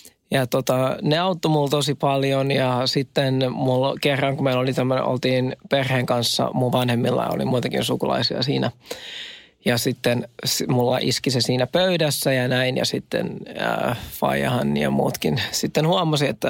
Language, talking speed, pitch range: Finnish, 150 wpm, 130-155 Hz